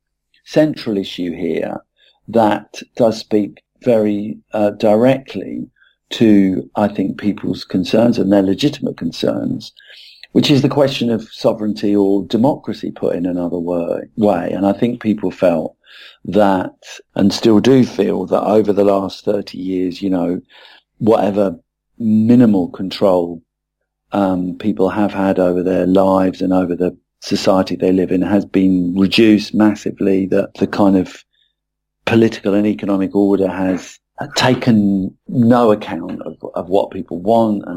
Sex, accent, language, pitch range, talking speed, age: male, British, English, 95-110 Hz, 140 wpm, 50-69